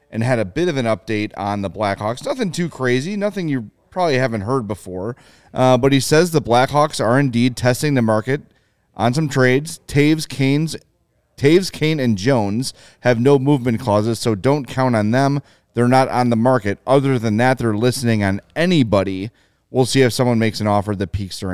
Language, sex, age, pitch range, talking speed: English, male, 30-49, 105-135 Hz, 195 wpm